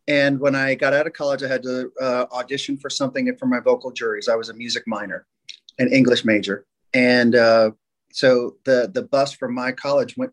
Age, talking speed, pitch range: 30-49, 210 wpm, 115-135 Hz